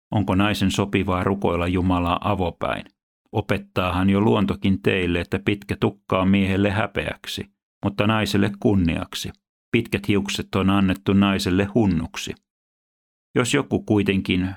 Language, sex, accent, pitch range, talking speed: Finnish, male, native, 90-100 Hz, 110 wpm